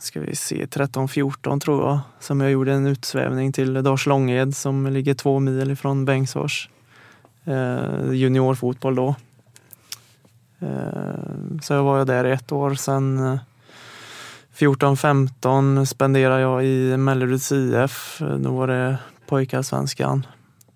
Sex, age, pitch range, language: male, 20-39, 125-135 Hz, English